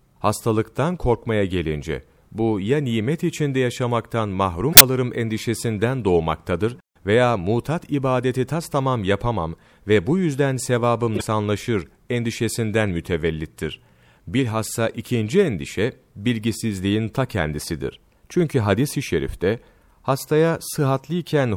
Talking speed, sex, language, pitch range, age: 100 wpm, male, Turkish, 90-125 Hz, 40-59